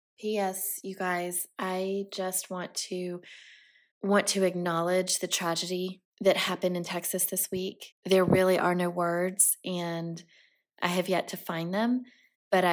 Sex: female